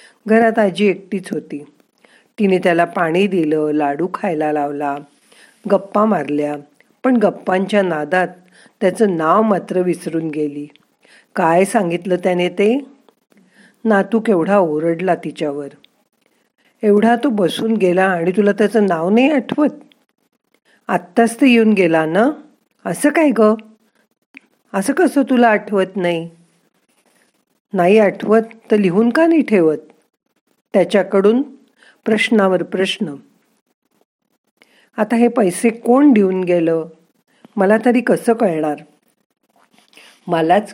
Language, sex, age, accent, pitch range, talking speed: Marathi, female, 50-69, native, 165-225 Hz, 105 wpm